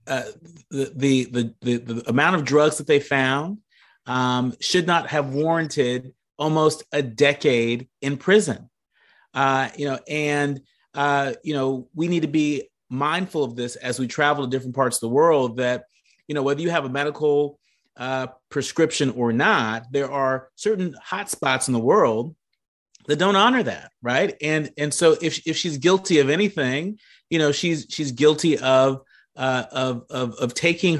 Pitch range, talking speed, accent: 125-150 Hz, 170 wpm, American